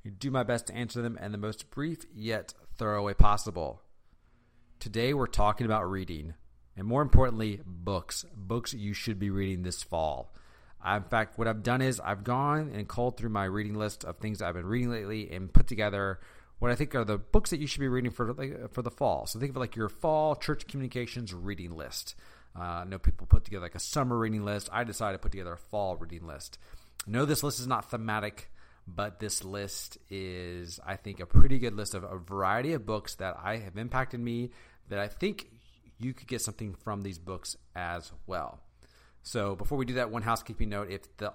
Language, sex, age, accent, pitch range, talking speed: English, male, 40-59, American, 95-120 Hz, 220 wpm